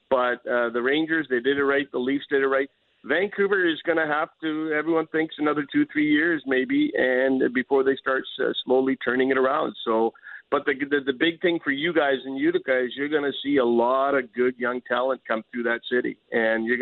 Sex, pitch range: male, 125-145 Hz